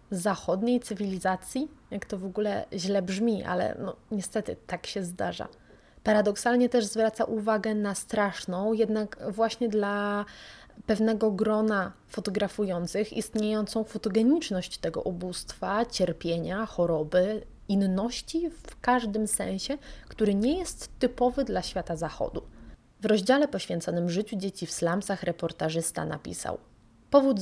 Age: 20-39